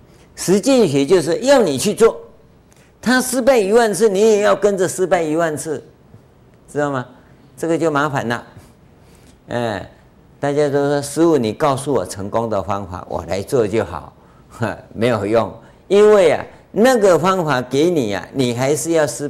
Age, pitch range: 50-69, 120-185 Hz